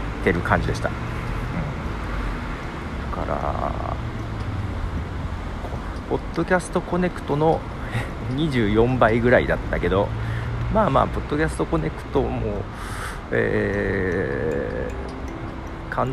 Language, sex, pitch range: Japanese, male, 80-120 Hz